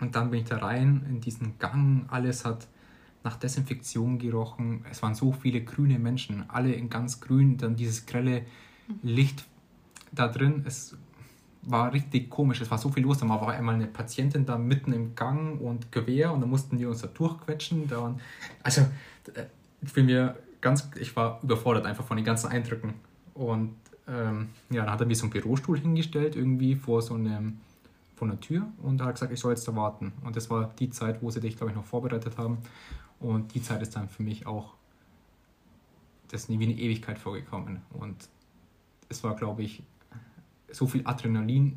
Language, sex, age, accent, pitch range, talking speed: German, male, 20-39, German, 115-130 Hz, 185 wpm